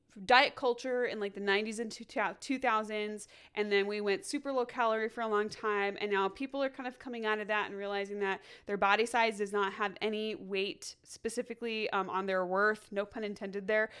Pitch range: 195-235 Hz